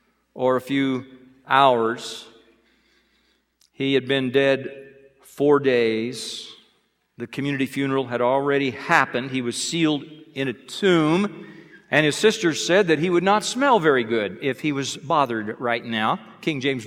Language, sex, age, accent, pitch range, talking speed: English, male, 50-69, American, 120-150 Hz, 145 wpm